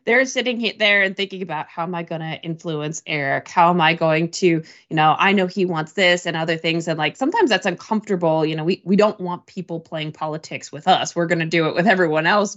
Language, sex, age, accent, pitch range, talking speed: English, female, 20-39, American, 160-205 Hz, 250 wpm